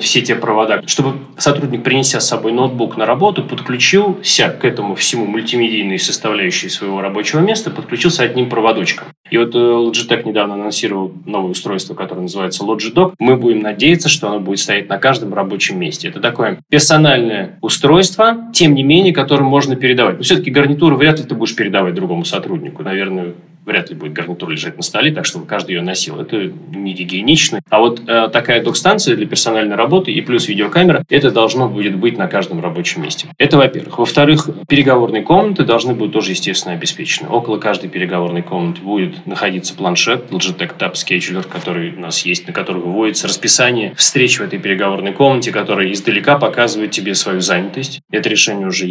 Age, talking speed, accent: 20-39, 175 wpm, native